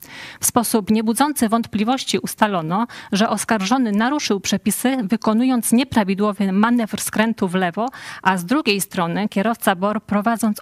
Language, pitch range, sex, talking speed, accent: Polish, 190-230 Hz, female, 125 wpm, native